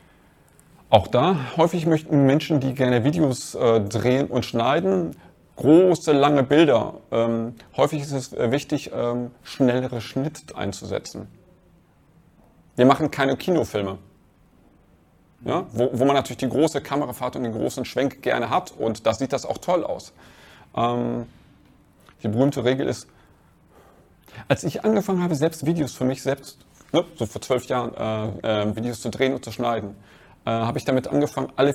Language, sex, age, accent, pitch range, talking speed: German, male, 30-49, German, 115-145 Hz, 155 wpm